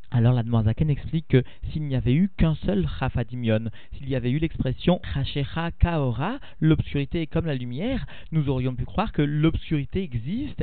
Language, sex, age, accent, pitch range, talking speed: French, male, 40-59, French, 145-200 Hz, 175 wpm